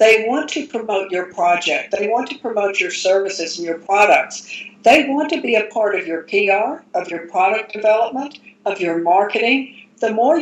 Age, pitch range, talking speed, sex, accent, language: 60-79, 190-235 Hz, 190 wpm, female, American, English